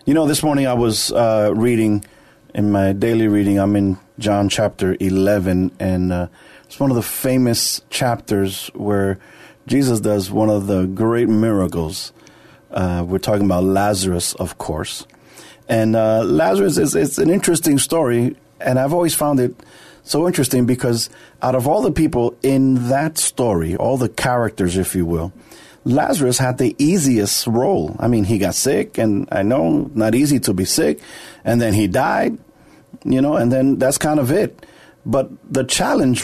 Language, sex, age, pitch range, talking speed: English, male, 40-59, 100-130 Hz, 170 wpm